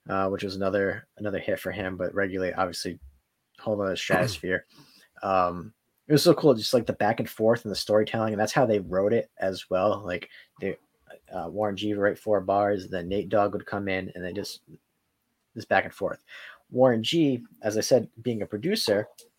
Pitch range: 95-115 Hz